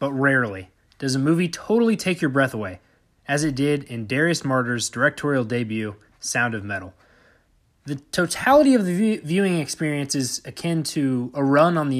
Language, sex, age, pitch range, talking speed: English, male, 20-39, 120-165 Hz, 170 wpm